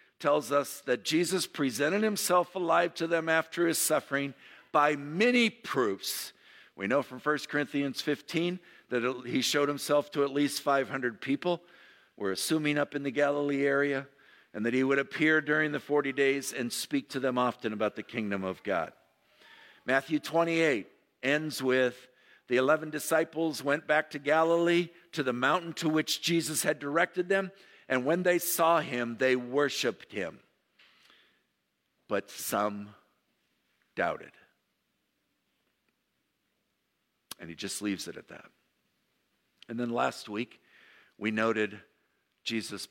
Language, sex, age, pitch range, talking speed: English, male, 50-69, 110-155 Hz, 140 wpm